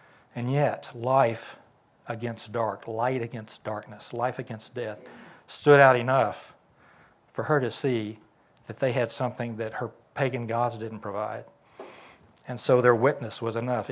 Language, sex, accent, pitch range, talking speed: English, male, American, 115-135 Hz, 145 wpm